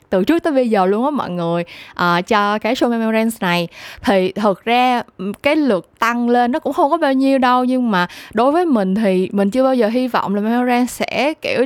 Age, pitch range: 20-39, 190-260 Hz